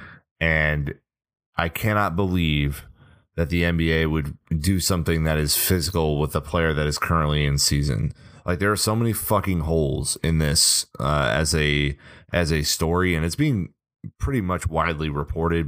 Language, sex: English, male